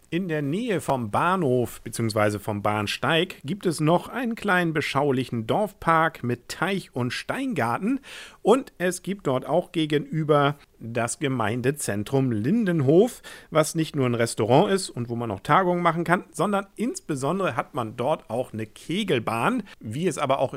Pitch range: 110-160 Hz